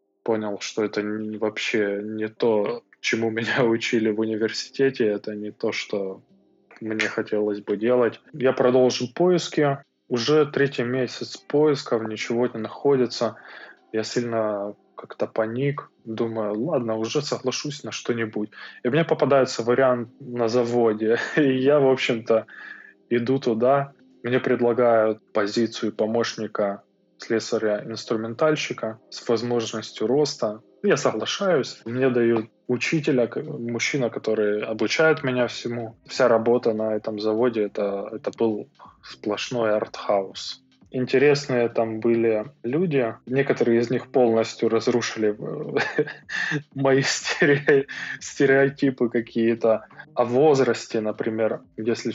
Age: 20-39